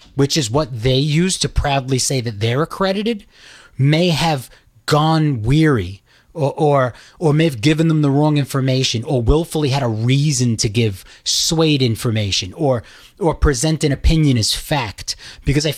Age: 30-49